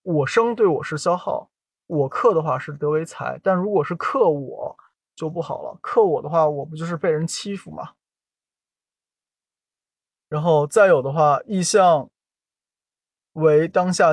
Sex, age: male, 20-39